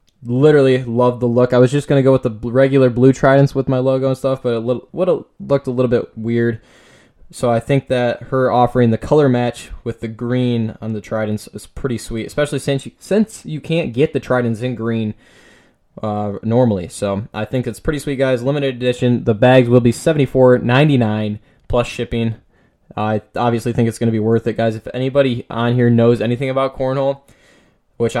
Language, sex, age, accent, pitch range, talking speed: English, male, 10-29, American, 115-135 Hz, 200 wpm